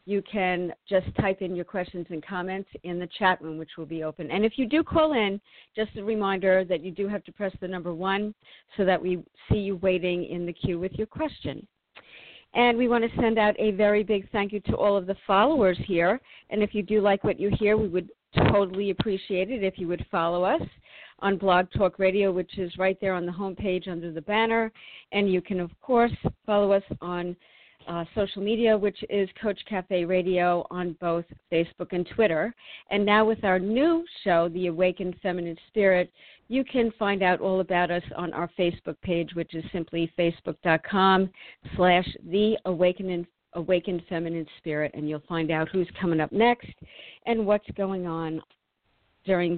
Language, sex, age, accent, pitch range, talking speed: English, female, 50-69, American, 175-205 Hz, 195 wpm